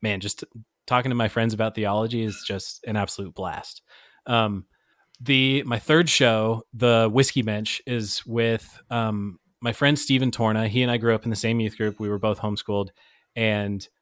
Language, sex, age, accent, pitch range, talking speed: English, male, 20-39, American, 105-125 Hz, 185 wpm